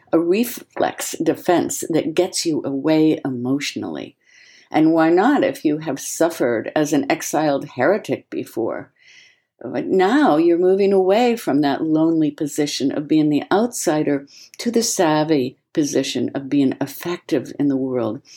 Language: English